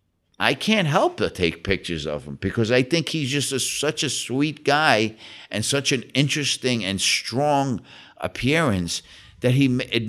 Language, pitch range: English, 90-130 Hz